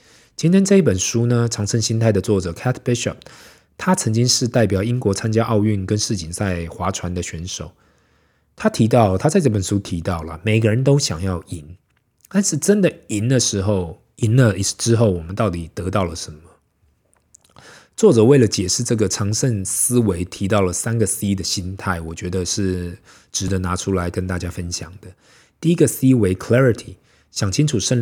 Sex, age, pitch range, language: male, 20-39, 90-120 Hz, Chinese